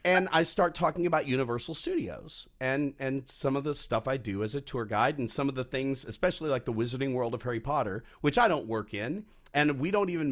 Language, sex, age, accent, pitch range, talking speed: English, male, 40-59, American, 115-155 Hz, 240 wpm